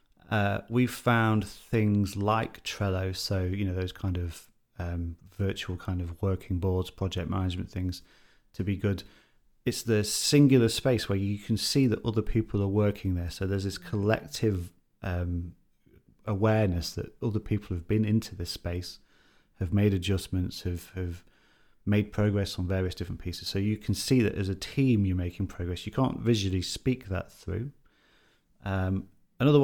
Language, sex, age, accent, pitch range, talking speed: English, male, 30-49, British, 90-110 Hz, 170 wpm